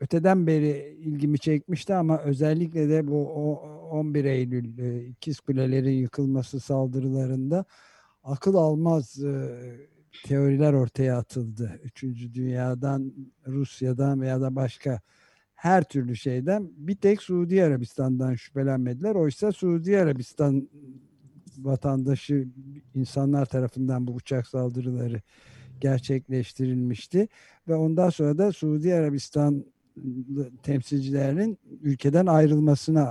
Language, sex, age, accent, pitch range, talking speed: Turkish, male, 60-79, native, 130-155 Hz, 95 wpm